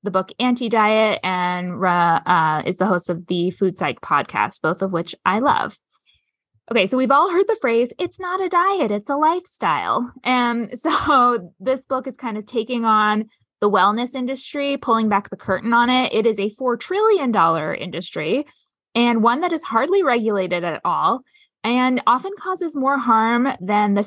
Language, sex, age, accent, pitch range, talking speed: English, female, 20-39, American, 190-250 Hz, 185 wpm